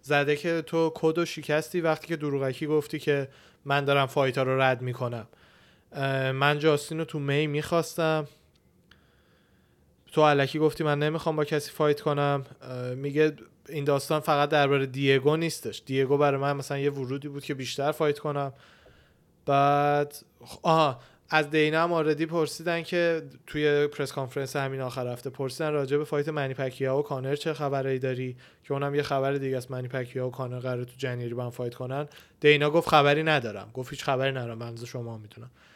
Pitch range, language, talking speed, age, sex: 135-155 Hz, Persian, 170 wpm, 20-39, male